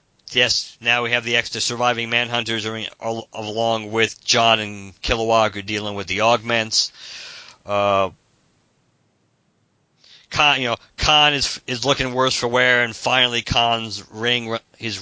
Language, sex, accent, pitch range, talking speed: English, male, American, 110-125 Hz, 150 wpm